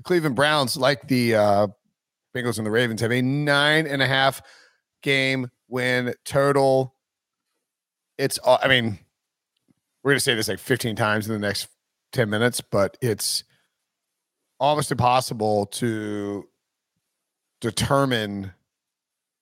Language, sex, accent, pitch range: English, male, American, 115-140 Hz